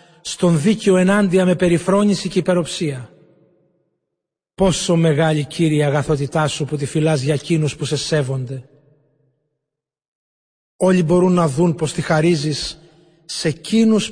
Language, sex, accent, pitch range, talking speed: Greek, male, native, 150-175 Hz, 125 wpm